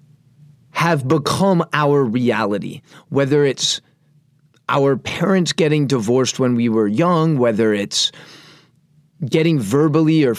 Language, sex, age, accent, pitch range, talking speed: English, male, 30-49, American, 135-165 Hz, 110 wpm